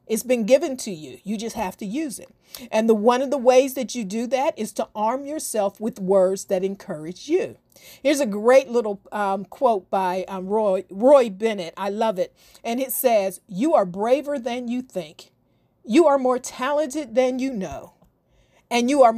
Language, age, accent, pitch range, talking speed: English, 40-59, American, 210-295 Hz, 195 wpm